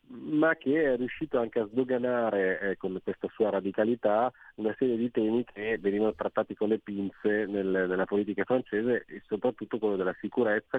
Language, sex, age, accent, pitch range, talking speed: Italian, male, 30-49, native, 95-110 Hz, 170 wpm